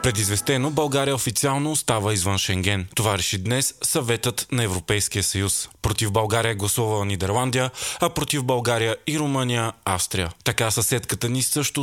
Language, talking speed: Bulgarian, 135 wpm